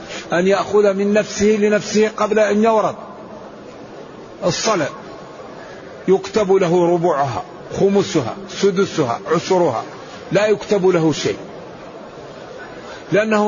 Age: 50-69